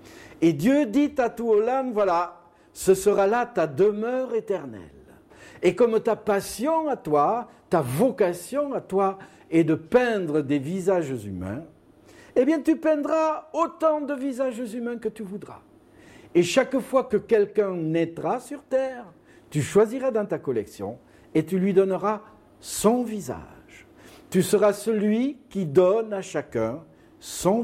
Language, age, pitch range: French, 60-79, 170-250 Hz